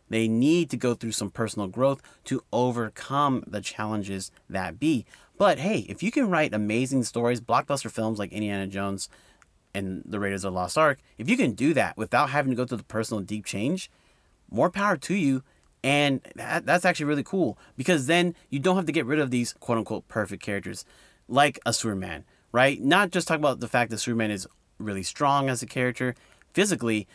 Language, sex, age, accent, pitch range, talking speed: English, male, 30-49, American, 105-135 Hz, 195 wpm